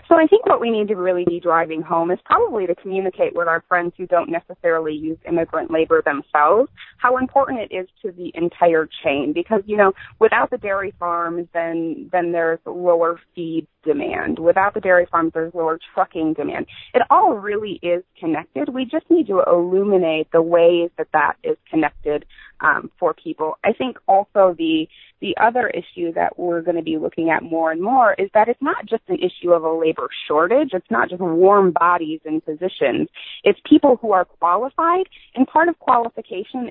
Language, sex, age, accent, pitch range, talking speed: English, female, 30-49, American, 165-215 Hz, 190 wpm